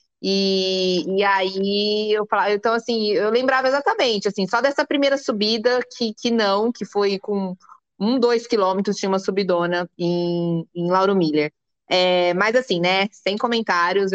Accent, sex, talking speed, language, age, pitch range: Brazilian, female, 155 wpm, Portuguese, 20-39, 180-220 Hz